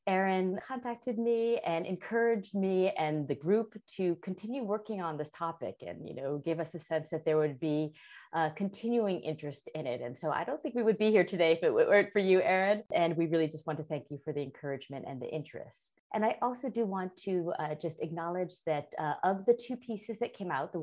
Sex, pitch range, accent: female, 150-210 Hz, American